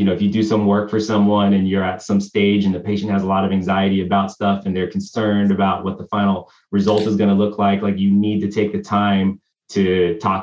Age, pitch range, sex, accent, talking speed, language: 20-39, 95-110 Hz, male, American, 265 wpm, English